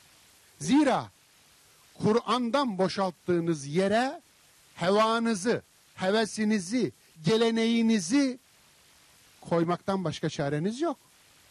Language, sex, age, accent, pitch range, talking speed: Turkish, male, 50-69, native, 160-235 Hz, 55 wpm